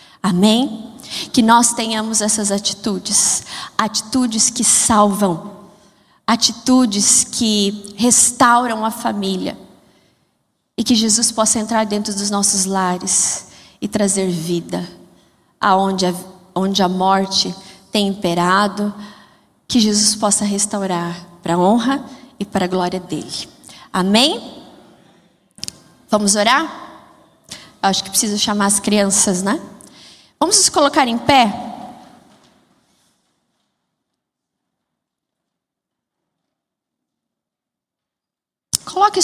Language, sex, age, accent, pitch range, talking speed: Portuguese, female, 20-39, Brazilian, 200-245 Hz, 90 wpm